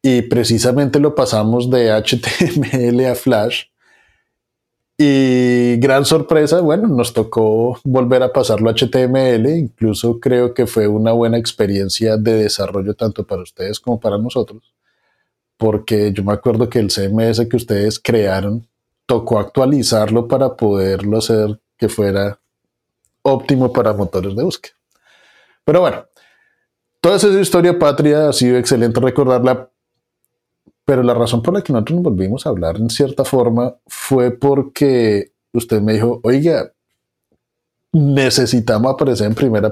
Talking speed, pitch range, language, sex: 135 wpm, 110-130 Hz, Spanish, male